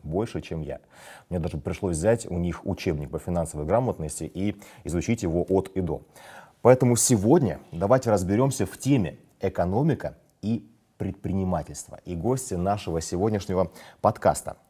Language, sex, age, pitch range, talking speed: Russian, male, 30-49, 85-110 Hz, 135 wpm